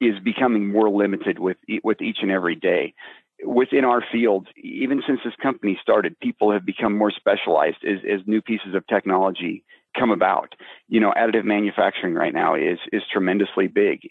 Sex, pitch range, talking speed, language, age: male, 95-115 Hz, 175 wpm, English, 40-59